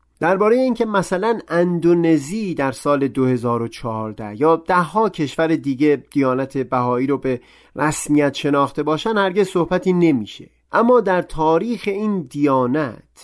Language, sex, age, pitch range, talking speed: Persian, male, 30-49, 125-170 Hz, 125 wpm